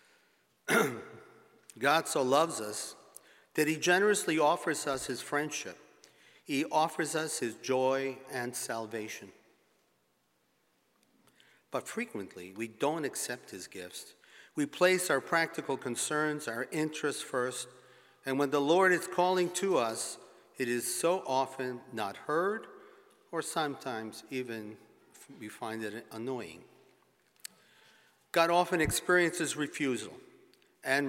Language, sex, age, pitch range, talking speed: English, male, 50-69, 125-175 Hz, 115 wpm